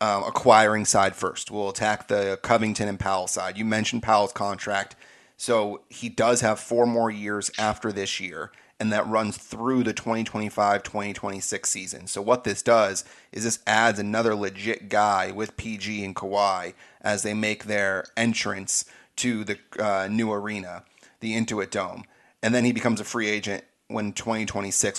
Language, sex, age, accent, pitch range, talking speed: English, male, 30-49, American, 100-115 Hz, 165 wpm